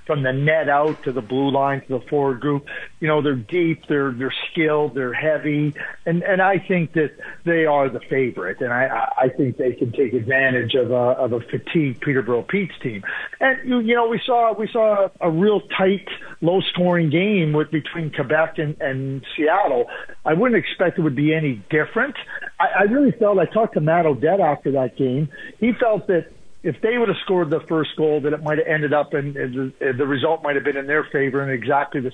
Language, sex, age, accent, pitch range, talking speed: English, male, 50-69, American, 145-180 Hz, 215 wpm